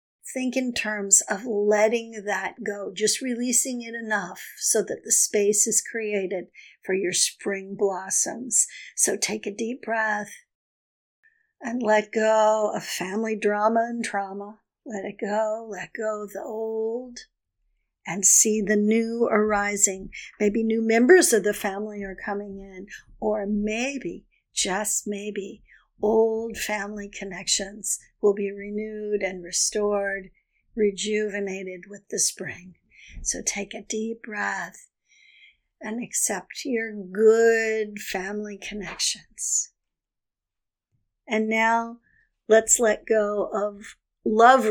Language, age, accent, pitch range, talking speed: English, 50-69, American, 200-230 Hz, 120 wpm